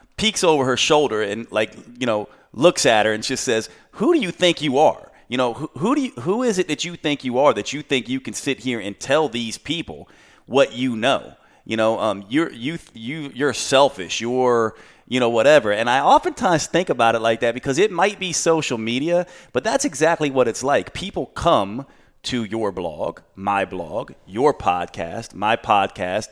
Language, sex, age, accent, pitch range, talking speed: English, male, 30-49, American, 110-155 Hz, 205 wpm